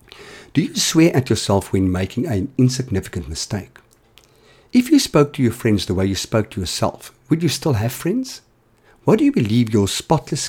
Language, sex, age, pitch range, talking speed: English, male, 50-69, 105-135 Hz, 190 wpm